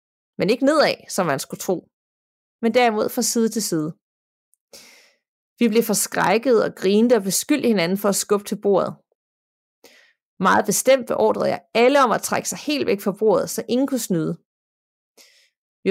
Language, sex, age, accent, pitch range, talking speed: Danish, female, 30-49, native, 195-250 Hz, 165 wpm